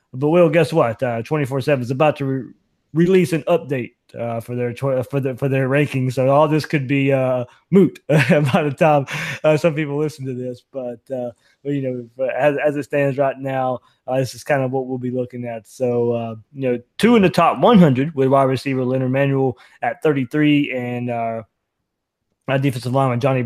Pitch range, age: 125-145 Hz, 20-39